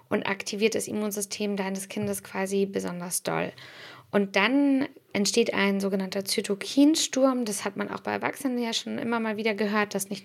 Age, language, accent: 20-39, German, German